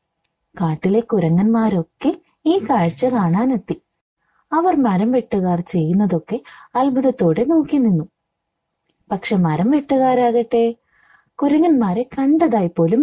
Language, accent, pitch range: Malayalam, native, 170-250 Hz